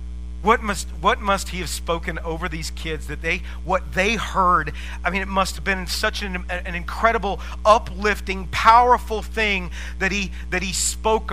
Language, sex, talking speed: English, male, 175 wpm